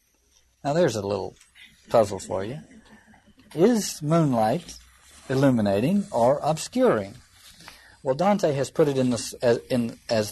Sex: male